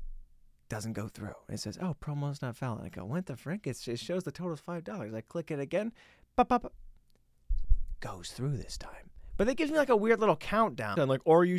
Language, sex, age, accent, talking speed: English, male, 30-49, American, 235 wpm